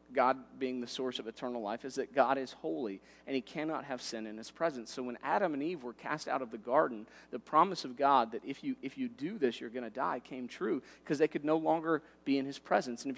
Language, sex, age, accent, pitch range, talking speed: English, male, 40-59, American, 115-140 Hz, 270 wpm